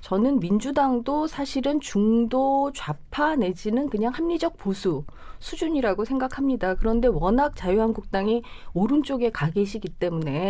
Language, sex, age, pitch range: Korean, female, 30-49, 195-265 Hz